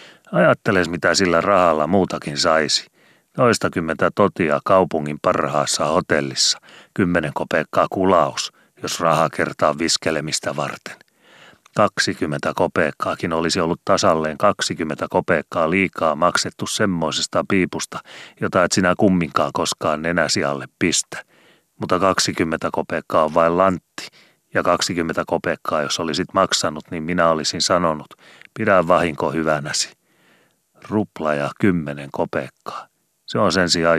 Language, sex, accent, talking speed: Finnish, male, native, 115 wpm